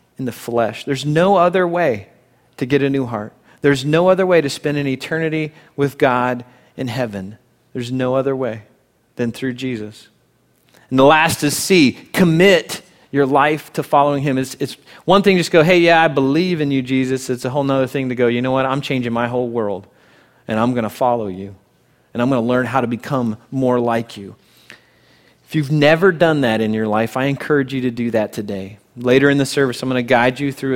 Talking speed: 215 wpm